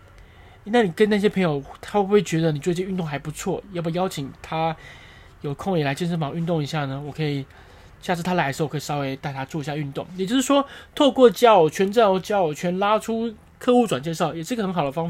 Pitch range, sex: 135-190 Hz, male